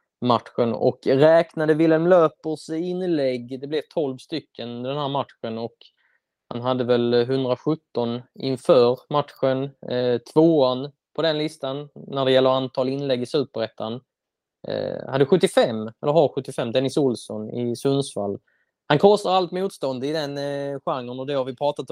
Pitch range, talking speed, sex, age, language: 120-140 Hz, 150 wpm, male, 20-39, Swedish